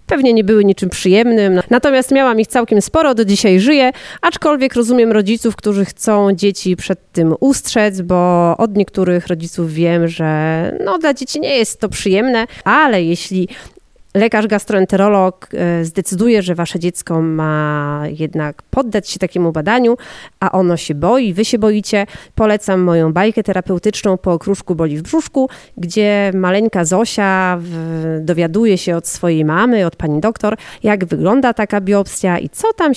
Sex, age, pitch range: female, 30-49, 175-220 Hz